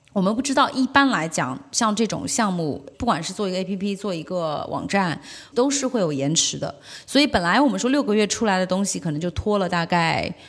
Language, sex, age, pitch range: Chinese, female, 30-49, 170-255 Hz